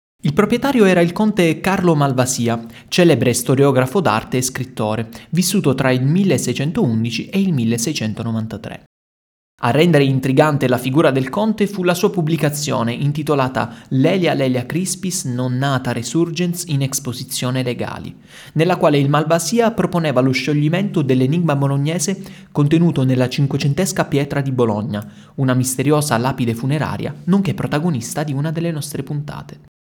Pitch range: 125-170 Hz